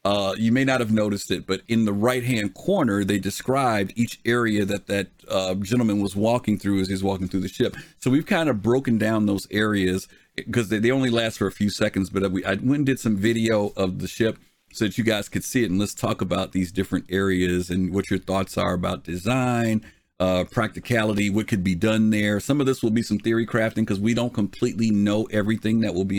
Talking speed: 235 wpm